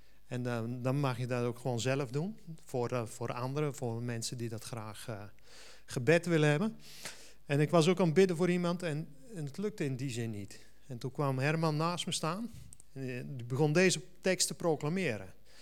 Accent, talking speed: Dutch, 210 wpm